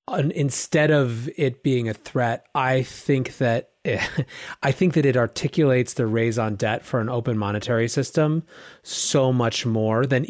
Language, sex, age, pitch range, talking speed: English, male, 30-49, 115-145 Hz, 165 wpm